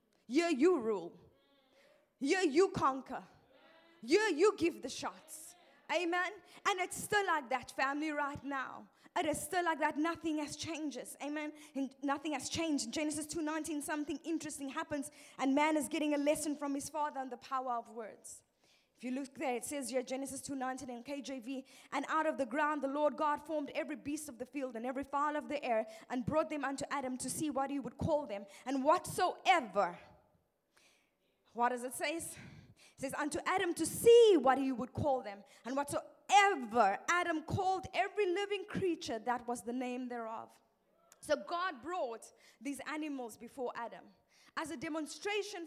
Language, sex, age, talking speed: English, female, 20-39, 175 wpm